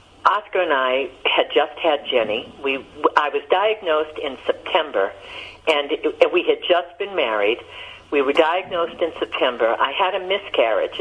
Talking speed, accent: 145 wpm, American